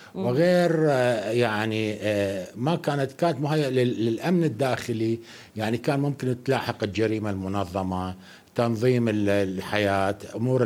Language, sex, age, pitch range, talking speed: Arabic, male, 60-79, 115-155 Hz, 95 wpm